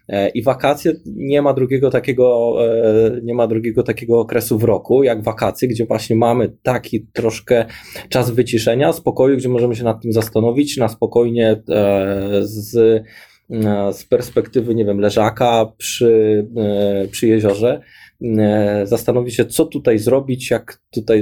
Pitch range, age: 115-135 Hz, 20-39